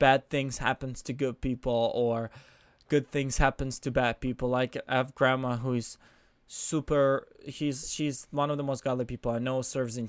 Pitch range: 125-140 Hz